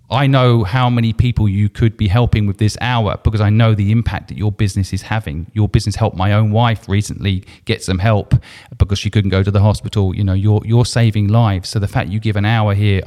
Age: 40-59